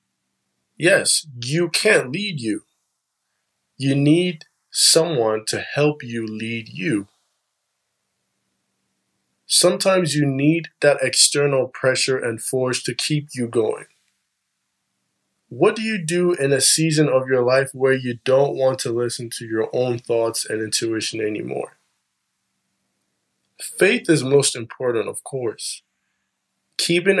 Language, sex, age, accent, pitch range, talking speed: English, male, 20-39, American, 110-140 Hz, 120 wpm